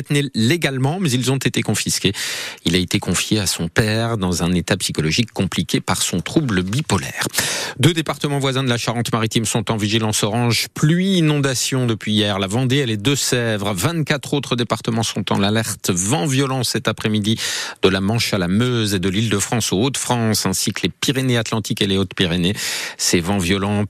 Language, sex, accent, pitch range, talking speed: French, male, French, 95-125 Hz, 180 wpm